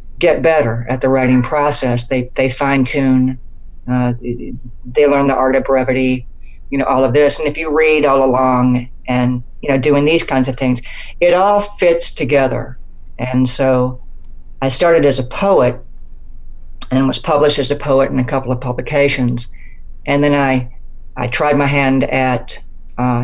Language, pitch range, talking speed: English, 125-140 Hz, 170 wpm